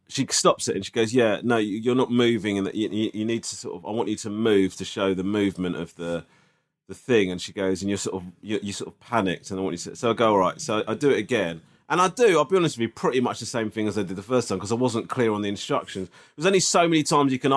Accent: British